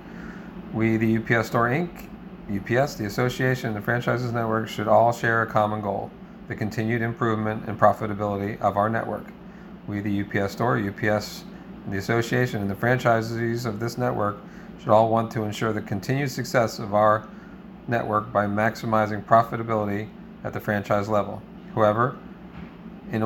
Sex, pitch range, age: male, 105-130 Hz, 40-59